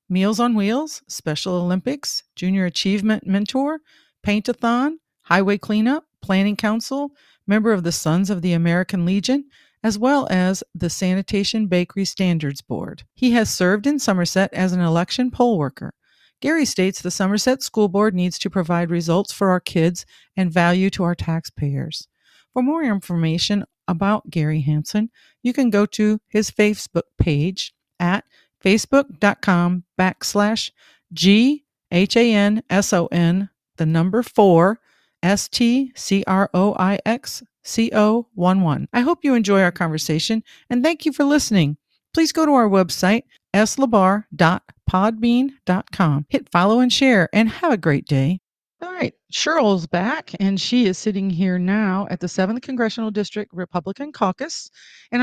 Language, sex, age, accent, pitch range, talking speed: English, female, 40-59, American, 180-235 Hz, 150 wpm